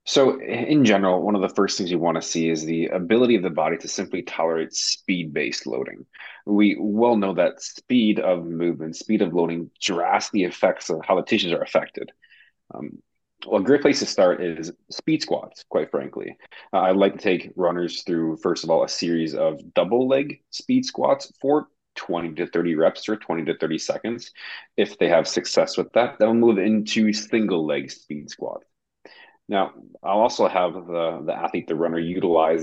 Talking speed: 190 wpm